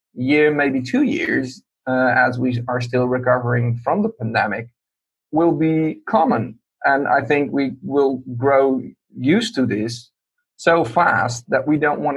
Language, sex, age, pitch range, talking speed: English, male, 40-59, 120-145 Hz, 155 wpm